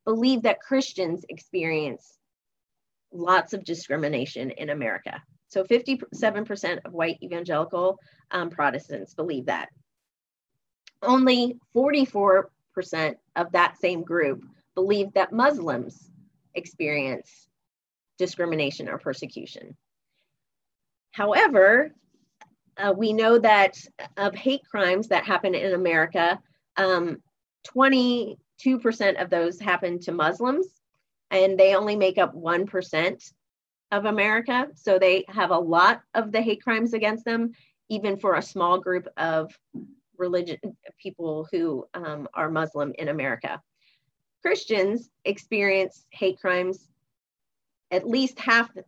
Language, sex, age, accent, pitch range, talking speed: English, female, 30-49, American, 165-220 Hz, 115 wpm